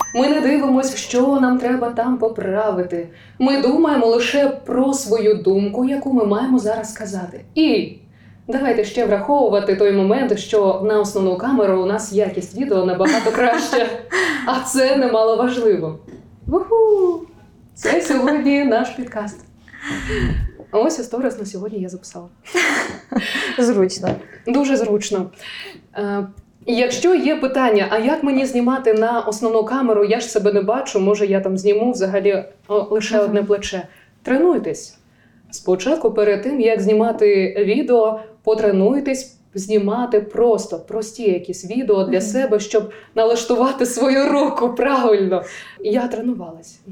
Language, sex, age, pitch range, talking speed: Ukrainian, female, 20-39, 200-255 Hz, 125 wpm